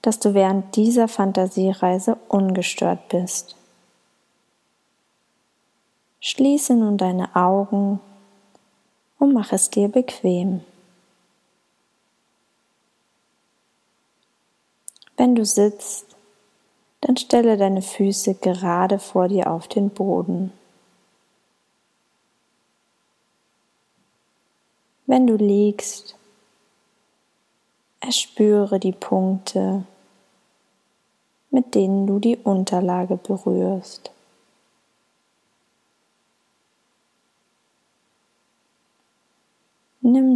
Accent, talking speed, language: German, 60 wpm, German